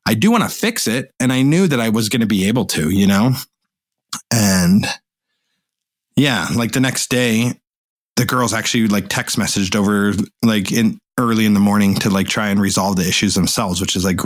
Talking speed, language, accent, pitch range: 205 wpm, English, American, 100-120 Hz